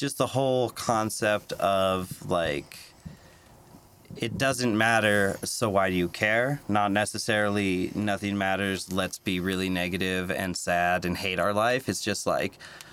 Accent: American